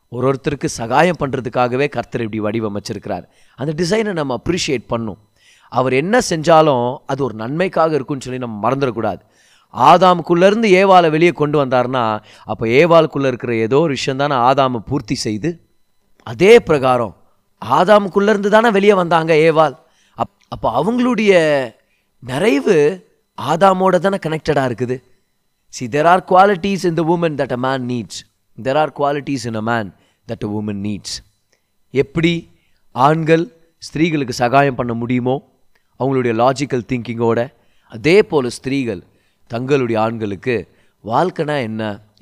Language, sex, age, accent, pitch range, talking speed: Tamil, male, 30-49, native, 115-155 Hz, 120 wpm